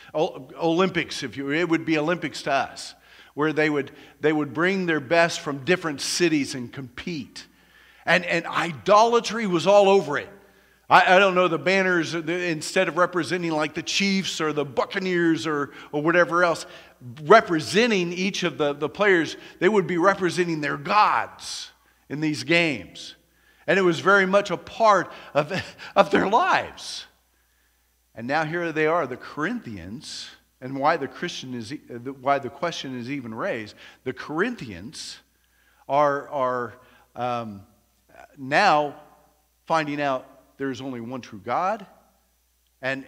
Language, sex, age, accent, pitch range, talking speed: English, male, 50-69, American, 125-170 Hz, 150 wpm